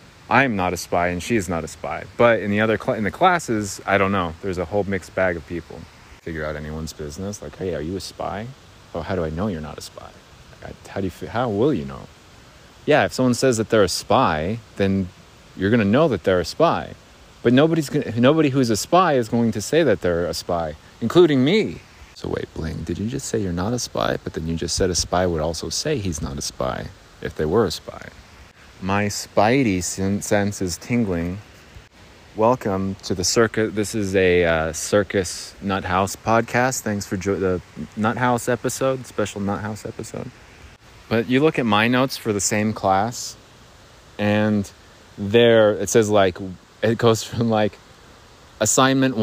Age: 30-49